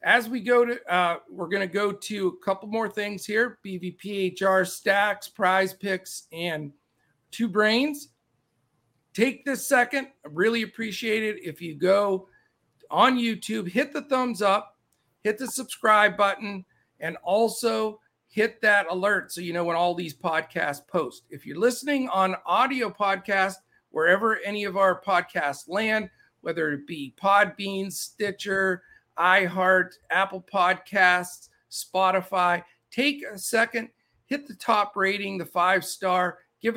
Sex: male